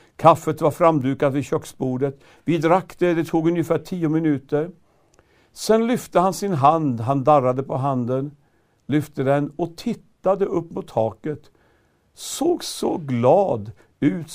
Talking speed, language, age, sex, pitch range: 140 wpm, Swedish, 60-79, male, 115-160 Hz